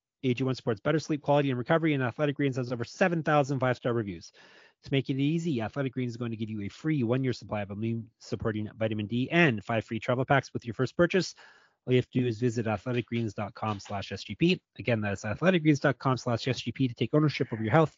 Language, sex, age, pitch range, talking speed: English, male, 30-49, 115-140 Hz, 205 wpm